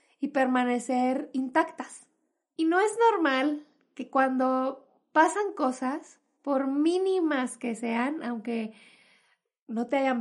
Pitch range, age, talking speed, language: 250-305 Hz, 20-39, 110 wpm, Spanish